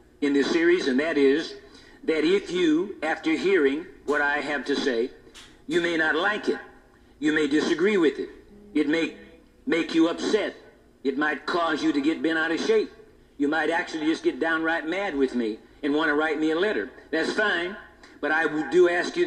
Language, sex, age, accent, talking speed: English, male, 60-79, American, 200 wpm